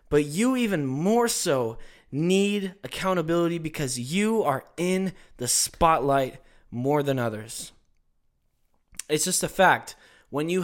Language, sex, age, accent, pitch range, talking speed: English, male, 20-39, American, 125-185 Hz, 125 wpm